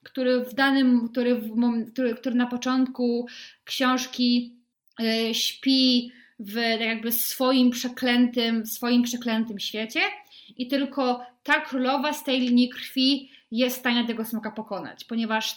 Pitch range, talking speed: 230-280 Hz, 125 wpm